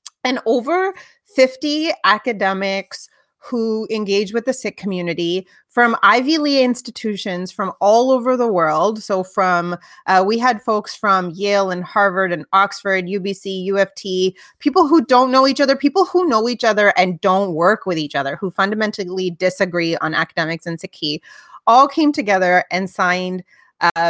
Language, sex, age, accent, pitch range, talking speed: English, female, 30-49, American, 180-235 Hz, 155 wpm